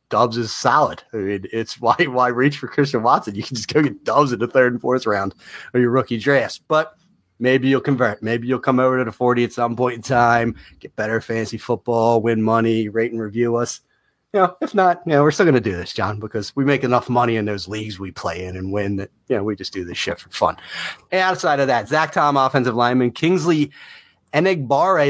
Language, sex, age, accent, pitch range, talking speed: English, male, 30-49, American, 115-140 Hz, 240 wpm